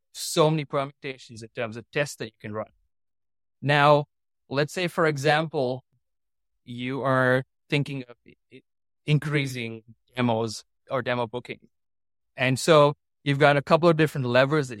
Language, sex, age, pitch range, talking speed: English, male, 20-39, 120-150 Hz, 140 wpm